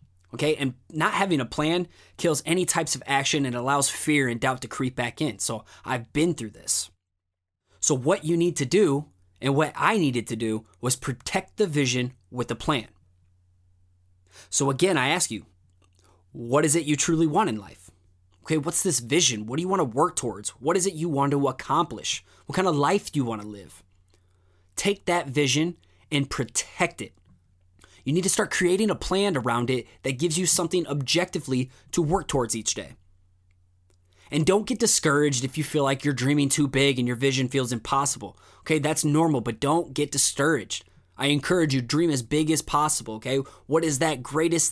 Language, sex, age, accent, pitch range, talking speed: English, male, 20-39, American, 100-155 Hz, 195 wpm